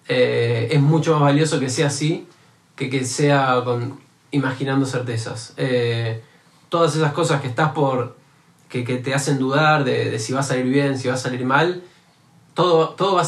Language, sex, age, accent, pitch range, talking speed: Spanish, male, 20-39, Argentinian, 130-160 Hz, 190 wpm